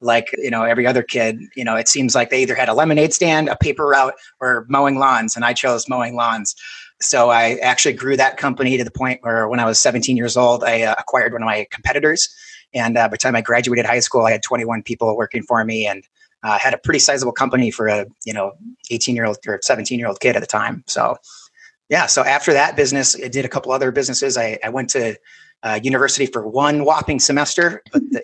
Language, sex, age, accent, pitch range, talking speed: English, male, 30-49, American, 115-145 Hz, 240 wpm